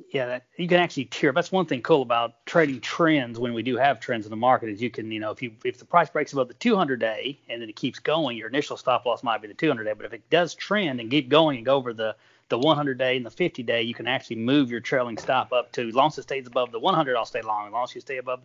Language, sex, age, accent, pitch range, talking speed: English, male, 30-49, American, 120-155 Hz, 310 wpm